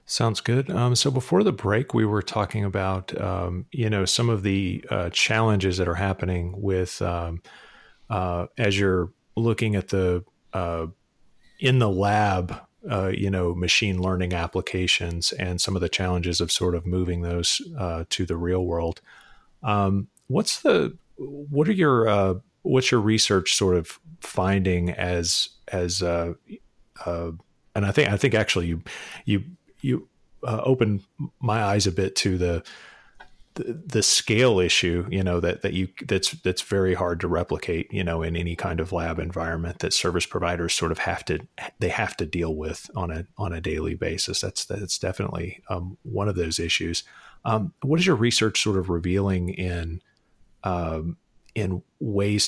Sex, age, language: male, 30-49, English